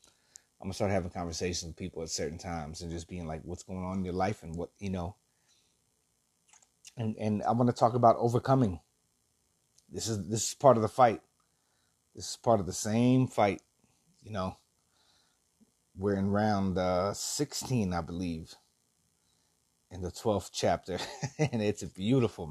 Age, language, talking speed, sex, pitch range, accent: 30-49, English, 170 wpm, male, 95-115 Hz, American